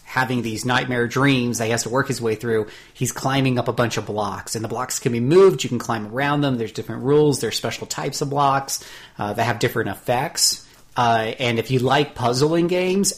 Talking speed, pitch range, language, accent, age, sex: 230 wpm, 115-140 Hz, English, American, 30-49, male